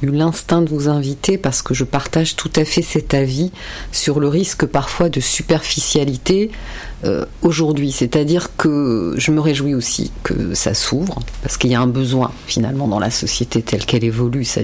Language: French